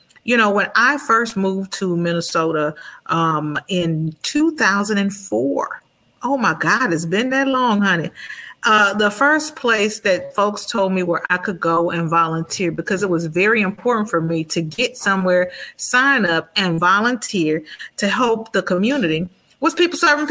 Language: English